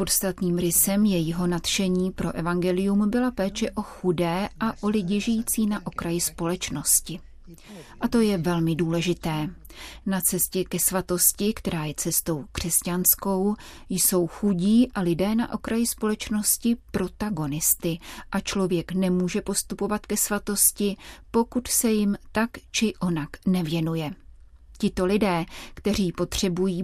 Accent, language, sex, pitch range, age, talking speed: native, Czech, female, 175-210 Hz, 30-49, 125 wpm